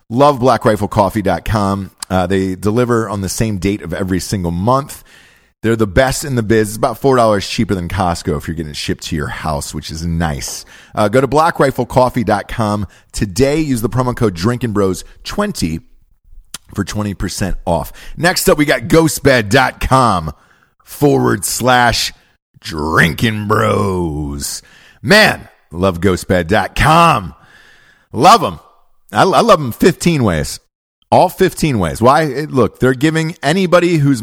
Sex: male